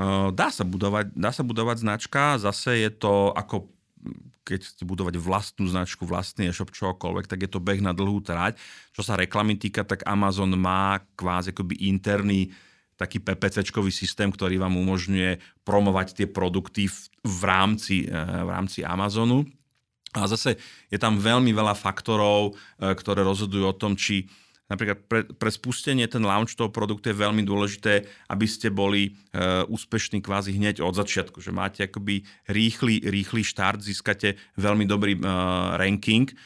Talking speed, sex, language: 145 wpm, male, Slovak